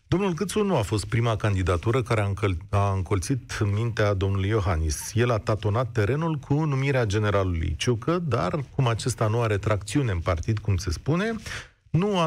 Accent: native